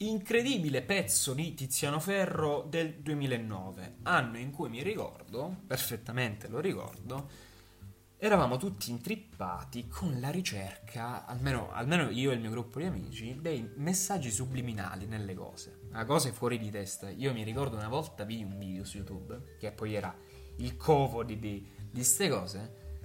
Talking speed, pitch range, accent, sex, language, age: 155 wpm, 100-140 Hz, native, male, Italian, 20-39